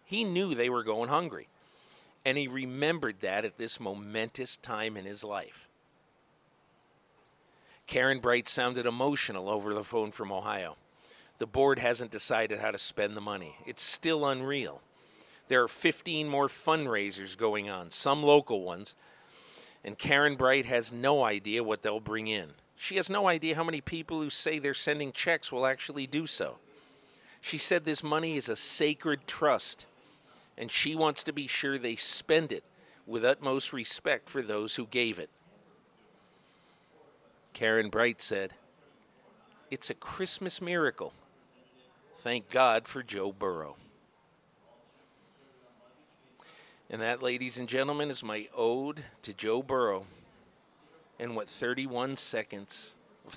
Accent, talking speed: American, 145 wpm